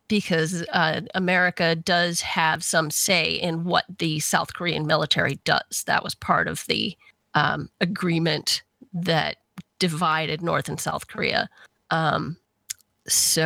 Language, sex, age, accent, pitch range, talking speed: English, female, 30-49, American, 165-185 Hz, 130 wpm